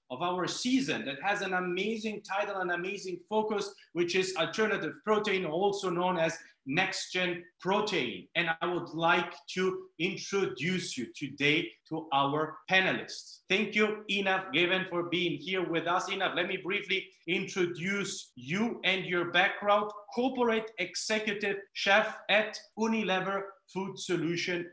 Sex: male